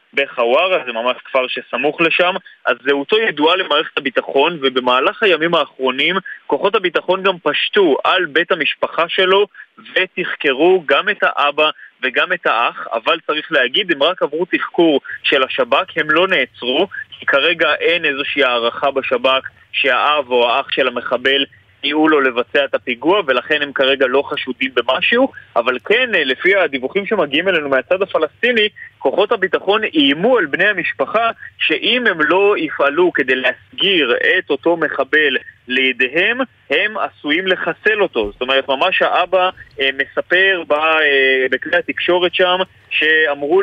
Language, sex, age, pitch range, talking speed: Hebrew, male, 20-39, 135-195 Hz, 140 wpm